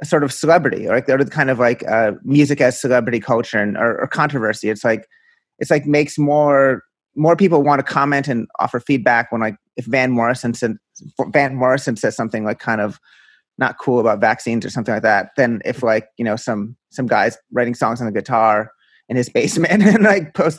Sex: male